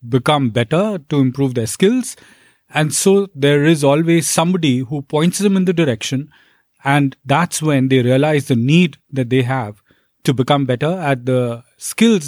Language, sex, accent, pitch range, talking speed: English, male, Indian, 135-170 Hz, 165 wpm